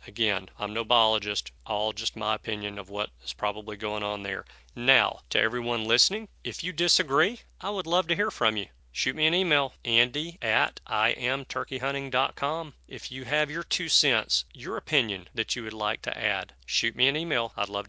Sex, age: male, 40-59